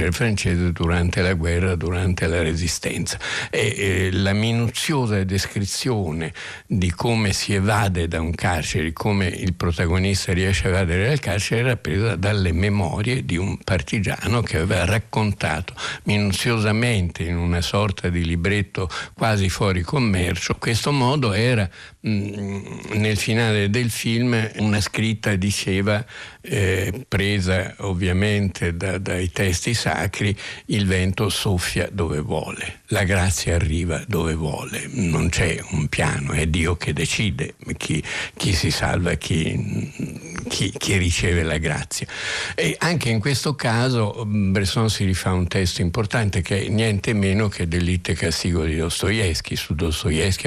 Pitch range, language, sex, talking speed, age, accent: 90-105 Hz, Italian, male, 130 wpm, 60-79, native